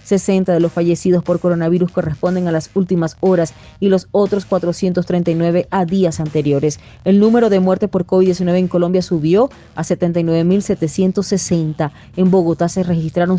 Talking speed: 150 wpm